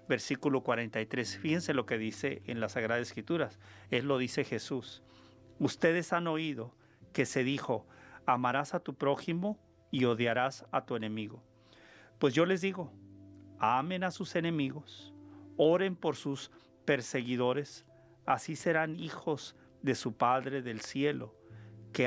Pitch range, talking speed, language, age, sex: 110-150 Hz, 135 wpm, Spanish, 40-59, male